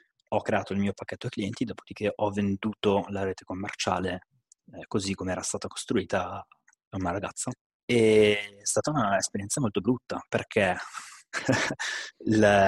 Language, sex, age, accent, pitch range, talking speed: Italian, male, 20-39, native, 95-110 Hz, 135 wpm